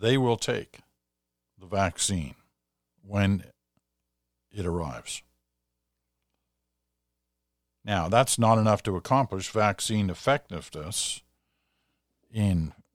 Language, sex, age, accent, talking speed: English, male, 50-69, American, 80 wpm